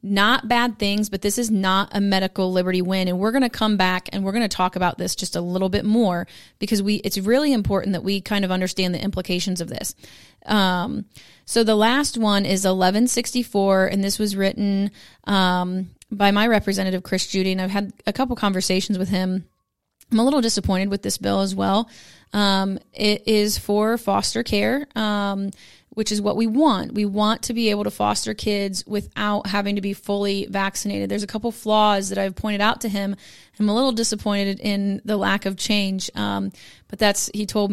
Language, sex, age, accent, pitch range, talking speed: English, female, 30-49, American, 190-215 Hz, 200 wpm